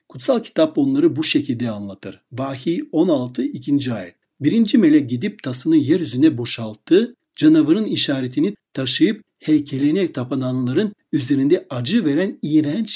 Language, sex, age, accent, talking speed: Turkish, male, 60-79, native, 115 wpm